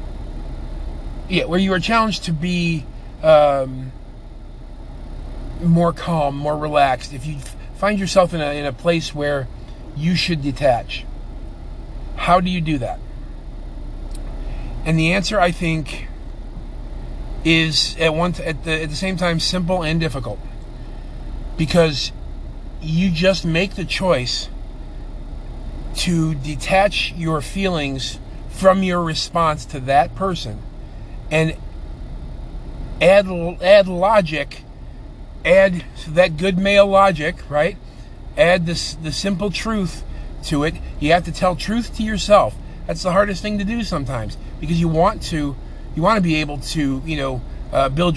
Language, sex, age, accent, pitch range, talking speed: English, male, 40-59, American, 130-180 Hz, 135 wpm